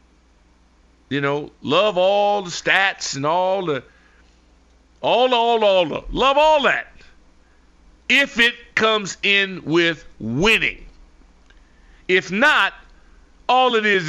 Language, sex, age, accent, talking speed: English, male, 50-69, American, 130 wpm